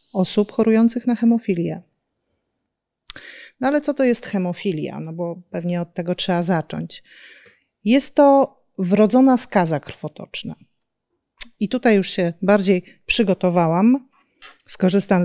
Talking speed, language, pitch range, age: 115 wpm, Polish, 185-240 Hz, 30-49